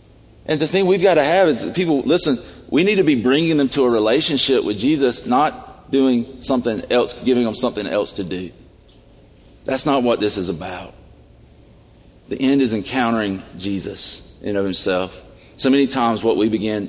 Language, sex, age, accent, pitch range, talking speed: English, male, 40-59, American, 100-125 Hz, 190 wpm